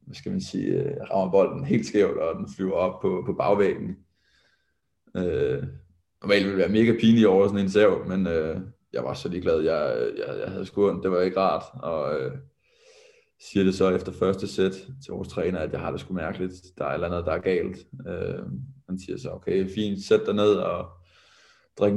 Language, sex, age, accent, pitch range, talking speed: Danish, male, 20-39, native, 90-135 Hz, 215 wpm